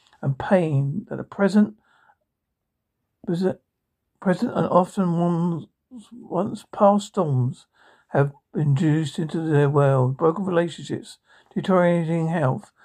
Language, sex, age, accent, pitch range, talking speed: English, male, 60-79, British, 150-195 Hz, 100 wpm